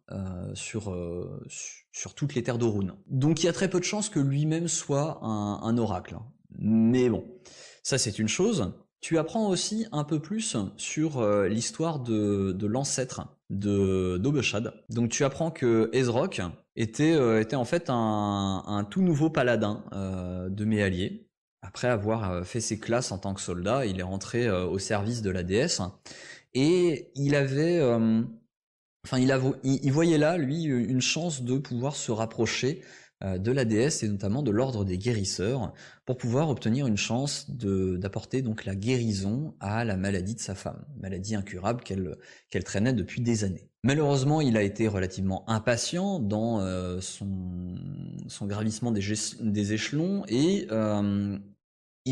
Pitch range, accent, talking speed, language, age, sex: 105-140 Hz, French, 170 wpm, French, 20-39, male